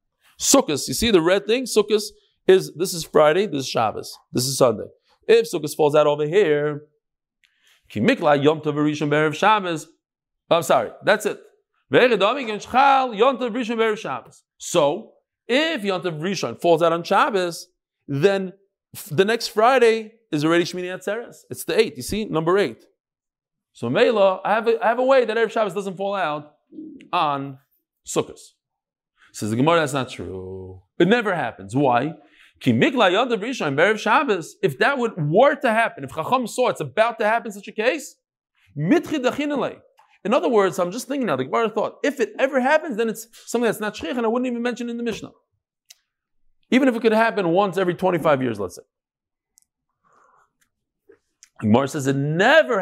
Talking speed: 160 wpm